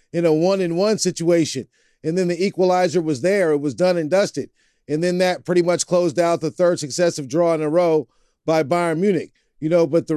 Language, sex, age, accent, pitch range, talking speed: English, male, 40-59, American, 165-190 Hz, 225 wpm